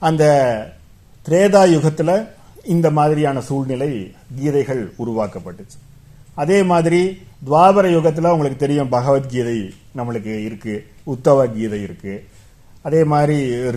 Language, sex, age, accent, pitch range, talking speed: Tamil, male, 50-69, native, 120-170 Hz, 90 wpm